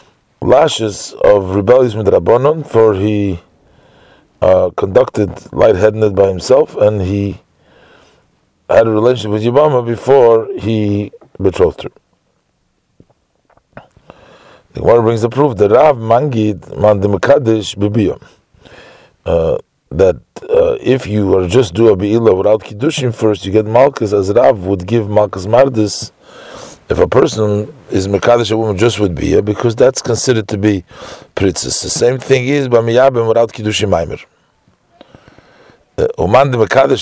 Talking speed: 130 wpm